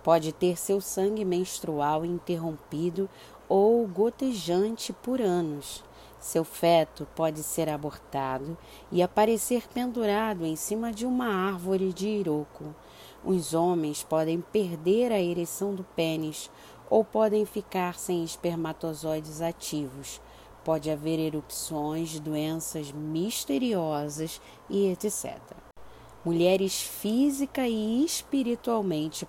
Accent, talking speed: Brazilian, 100 wpm